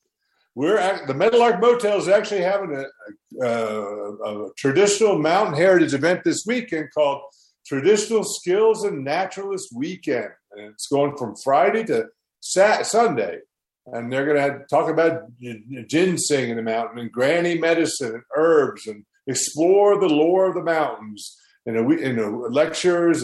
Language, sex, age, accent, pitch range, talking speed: English, male, 50-69, American, 120-190 Hz, 150 wpm